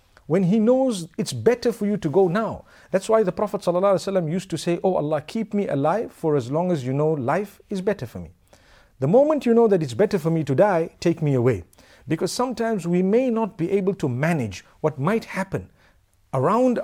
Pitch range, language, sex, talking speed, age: 120-180 Hz, English, male, 215 wpm, 50-69